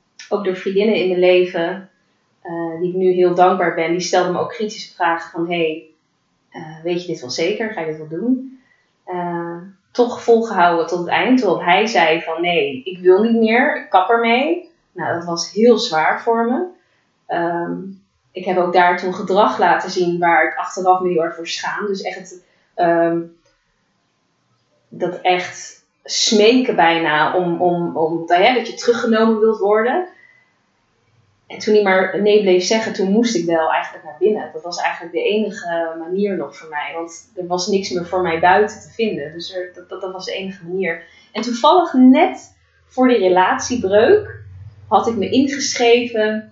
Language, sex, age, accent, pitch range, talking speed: Dutch, female, 20-39, Dutch, 170-225 Hz, 180 wpm